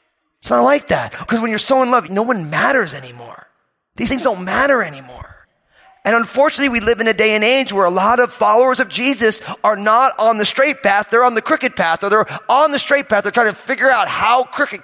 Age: 30-49